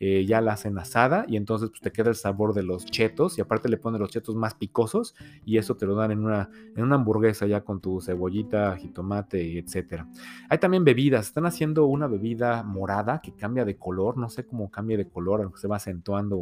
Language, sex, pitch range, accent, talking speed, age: Spanish, male, 100-140 Hz, Mexican, 225 wpm, 30-49